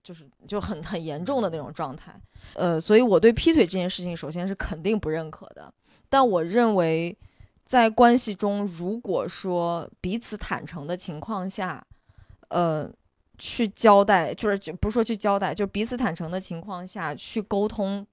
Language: Chinese